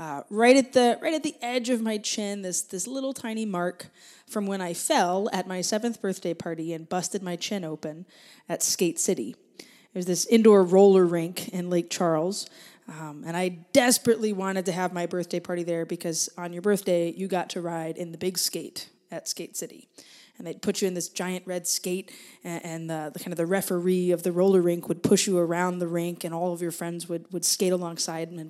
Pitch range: 170-210 Hz